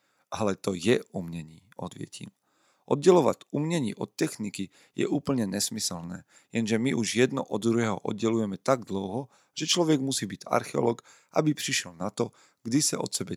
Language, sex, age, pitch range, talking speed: Slovak, male, 40-59, 95-110 Hz, 155 wpm